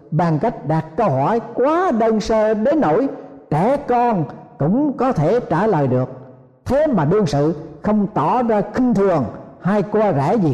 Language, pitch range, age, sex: Vietnamese, 145-210 Hz, 60-79, male